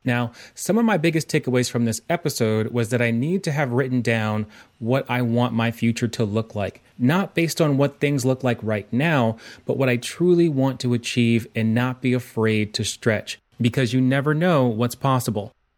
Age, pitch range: 30-49, 115-140 Hz